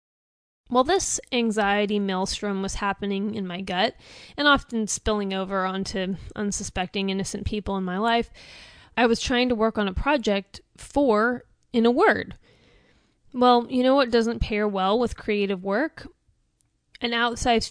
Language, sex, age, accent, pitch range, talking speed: English, female, 20-39, American, 195-245 Hz, 155 wpm